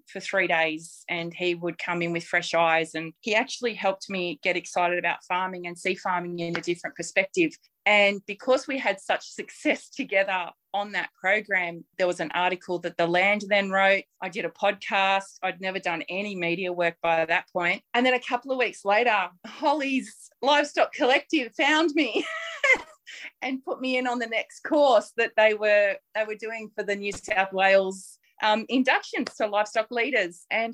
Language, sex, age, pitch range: English, female, 30-49, 185-245 Hz